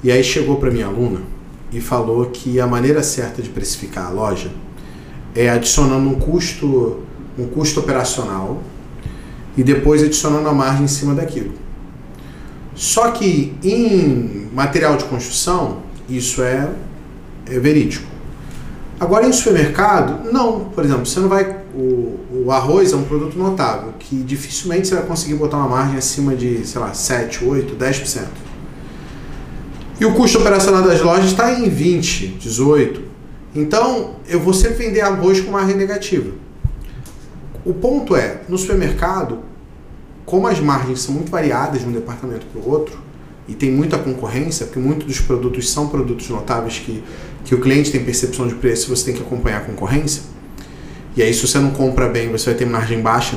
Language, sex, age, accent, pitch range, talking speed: Portuguese, male, 40-59, Brazilian, 125-170 Hz, 165 wpm